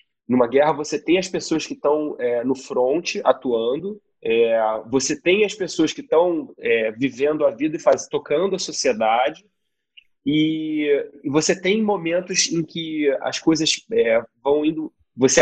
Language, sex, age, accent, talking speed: Portuguese, male, 30-49, Brazilian, 160 wpm